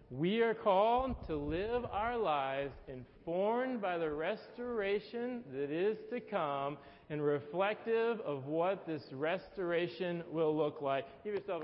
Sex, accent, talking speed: male, American, 135 wpm